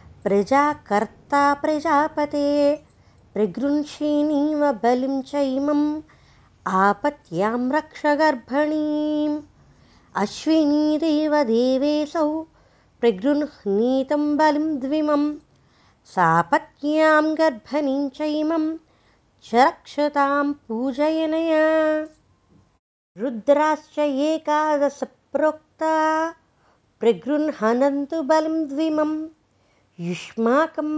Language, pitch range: Telugu, 270-310 Hz